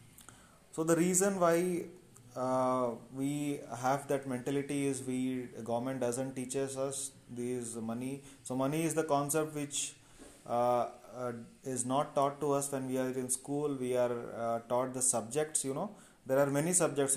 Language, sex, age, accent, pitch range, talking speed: English, male, 30-49, Indian, 125-145 Hz, 165 wpm